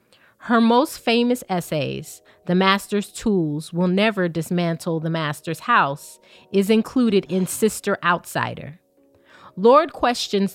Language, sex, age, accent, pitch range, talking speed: English, female, 30-49, American, 175-225 Hz, 115 wpm